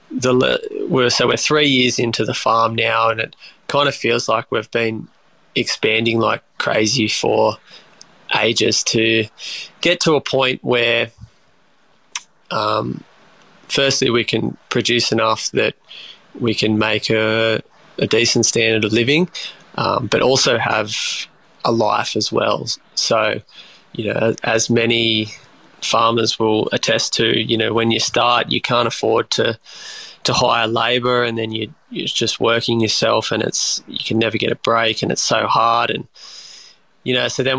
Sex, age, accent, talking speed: male, 20-39, Australian, 155 wpm